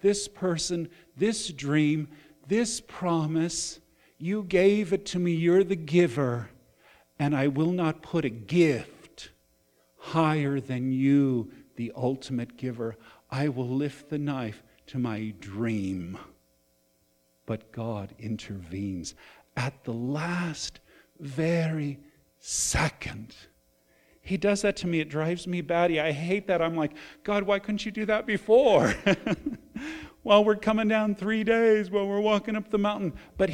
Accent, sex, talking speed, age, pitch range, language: American, male, 140 wpm, 50-69, 110-175 Hz, English